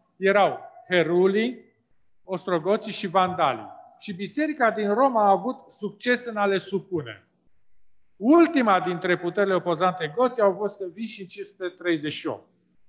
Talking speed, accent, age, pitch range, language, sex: 120 wpm, native, 40-59, 170-230 Hz, Romanian, male